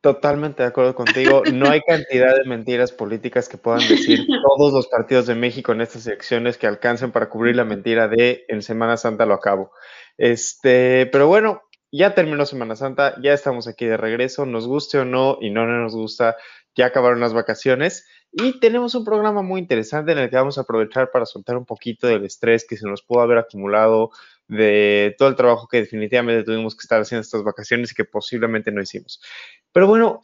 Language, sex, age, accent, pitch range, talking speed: Spanish, male, 20-39, Mexican, 115-140 Hz, 200 wpm